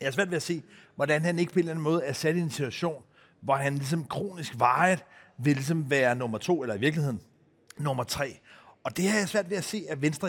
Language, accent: Danish, native